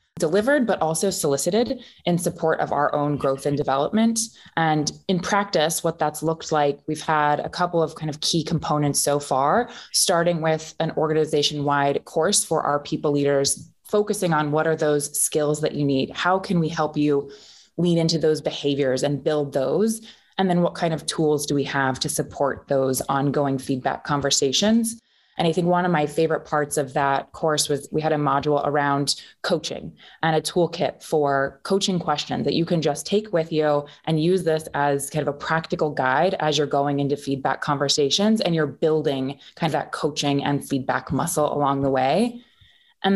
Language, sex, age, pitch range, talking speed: English, female, 20-39, 145-170 Hz, 190 wpm